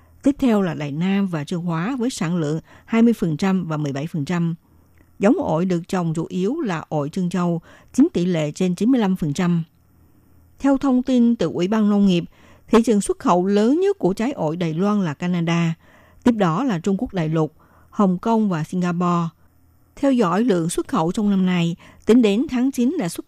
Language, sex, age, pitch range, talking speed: Vietnamese, female, 60-79, 170-220 Hz, 195 wpm